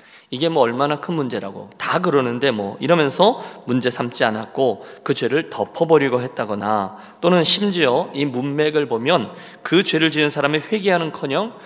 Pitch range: 125-165 Hz